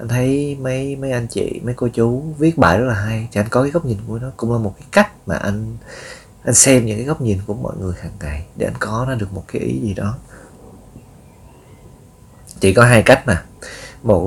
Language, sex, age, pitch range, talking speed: Vietnamese, male, 20-39, 90-120 Hz, 235 wpm